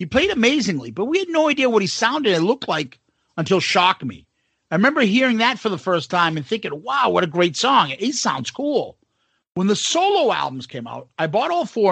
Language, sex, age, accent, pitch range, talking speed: English, male, 50-69, American, 155-220 Hz, 225 wpm